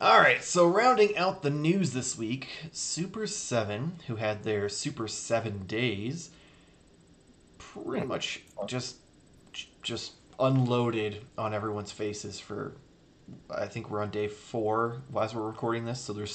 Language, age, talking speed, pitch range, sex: English, 30-49, 135 wpm, 105-135 Hz, male